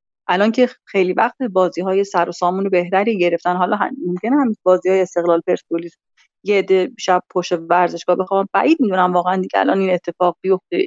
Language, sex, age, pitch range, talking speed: Persian, female, 30-49, 180-230 Hz, 190 wpm